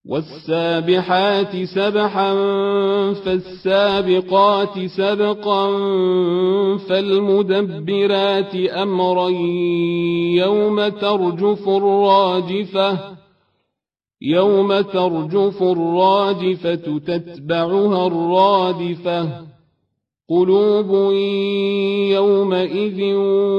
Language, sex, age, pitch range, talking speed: Arabic, male, 40-59, 180-200 Hz, 40 wpm